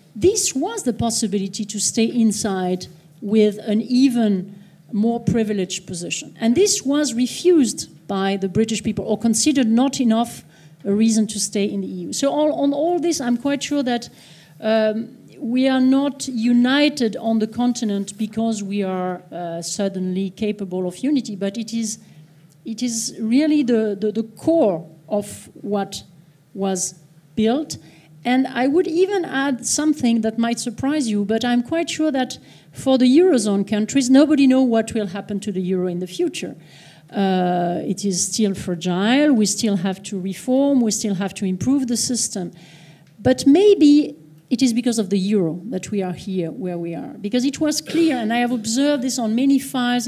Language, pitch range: English, 195-255 Hz